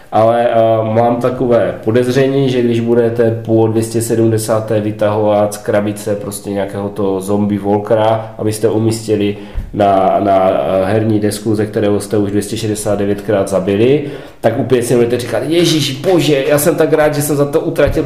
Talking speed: 155 wpm